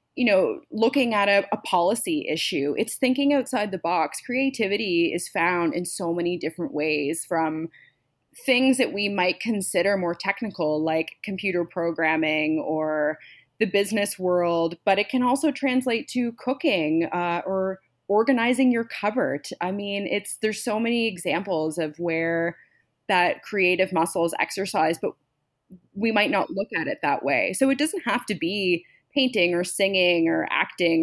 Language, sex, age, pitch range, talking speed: English, female, 20-39, 165-215 Hz, 155 wpm